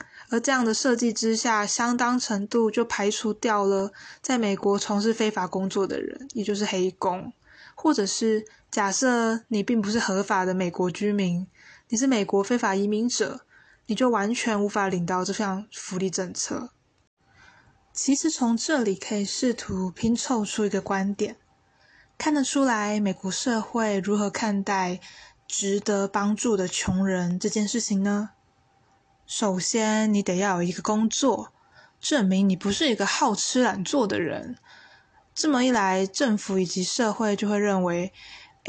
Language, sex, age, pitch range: Chinese, female, 20-39, 195-235 Hz